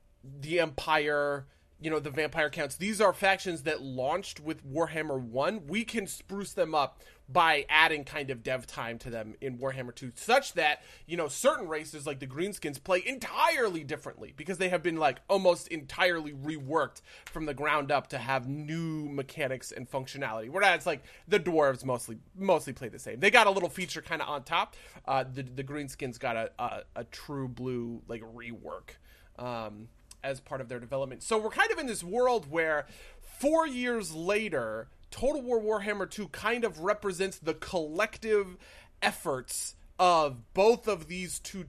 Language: English